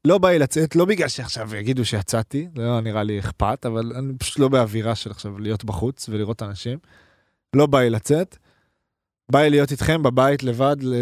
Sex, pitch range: male, 110-145 Hz